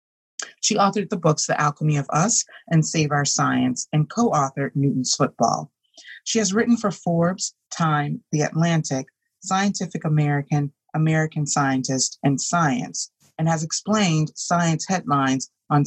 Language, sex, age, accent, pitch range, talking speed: English, female, 30-49, American, 140-170 Hz, 135 wpm